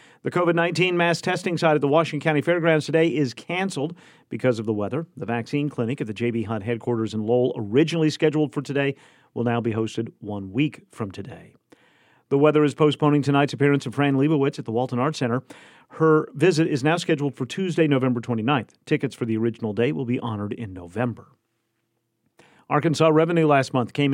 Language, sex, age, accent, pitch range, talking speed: English, male, 40-59, American, 120-150 Hz, 190 wpm